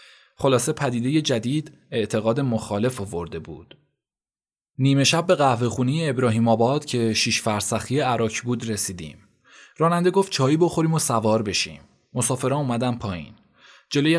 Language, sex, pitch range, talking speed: Persian, male, 115-150 Hz, 135 wpm